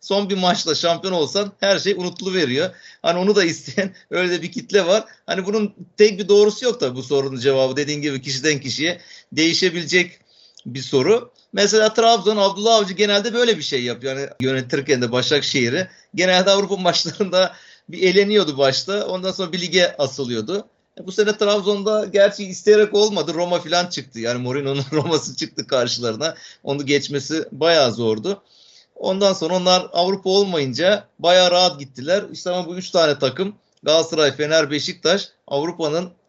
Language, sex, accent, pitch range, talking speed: Turkish, male, native, 135-190 Hz, 155 wpm